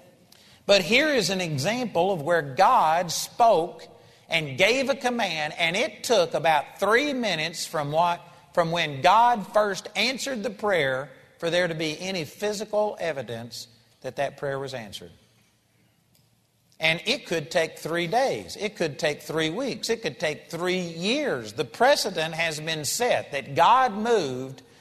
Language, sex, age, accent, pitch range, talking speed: English, male, 50-69, American, 135-185 Hz, 155 wpm